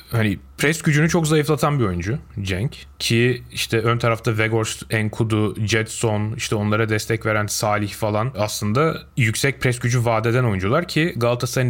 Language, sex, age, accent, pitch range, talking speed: Turkish, male, 30-49, native, 115-145 Hz, 150 wpm